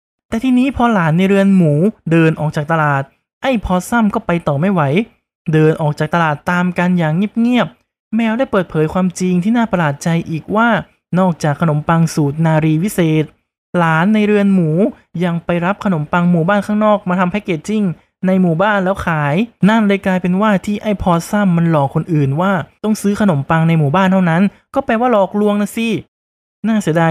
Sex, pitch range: male, 160-205 Hz